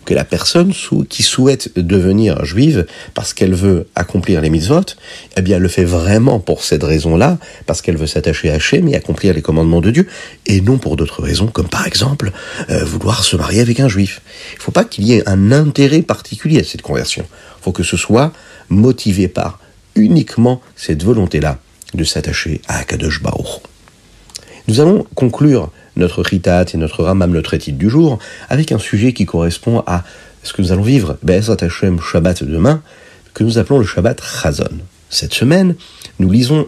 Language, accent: French, French